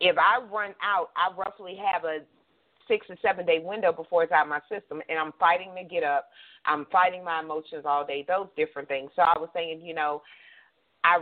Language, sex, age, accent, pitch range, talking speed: English, female, 40-59, American, 155-185 Hz, 215 wpm